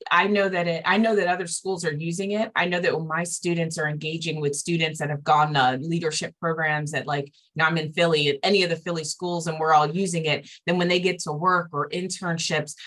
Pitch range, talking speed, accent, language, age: 150-180 Hz, 250 wpm, American, English, 20-39